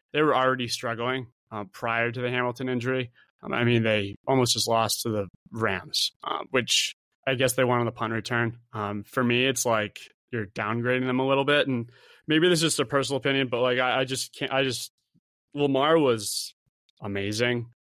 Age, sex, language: 20-39, male, English